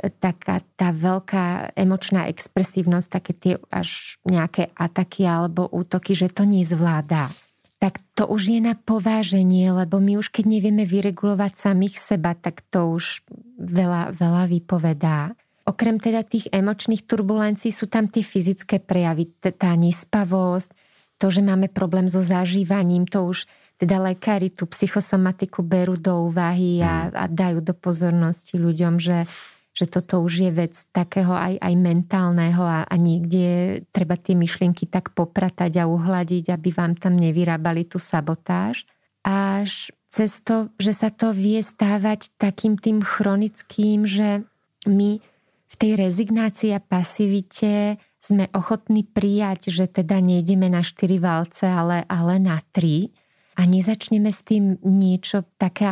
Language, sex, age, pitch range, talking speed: Slovak, female, 30-49, 175-205 Hz, 140 wpm